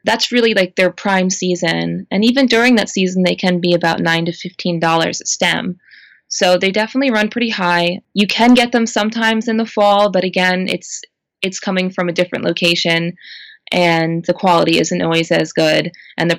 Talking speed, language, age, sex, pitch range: 190 wpm, English, 20-39, female, 170-215 Hz